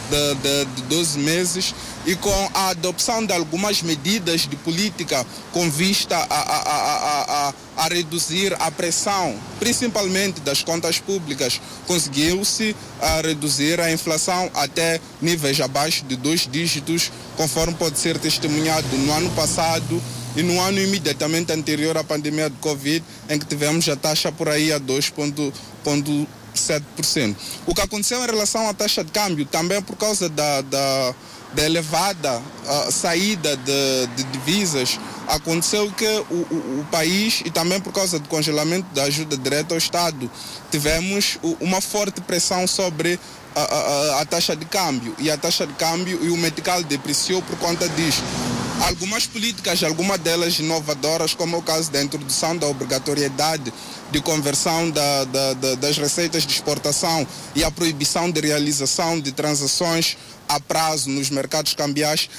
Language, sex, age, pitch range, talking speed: Portuguese, male, 20-39, 145-175 Hz, 145 wpm